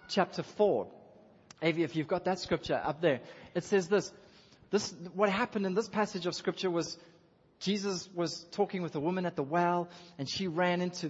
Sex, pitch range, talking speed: male, 150-205 Hz, 185 wpm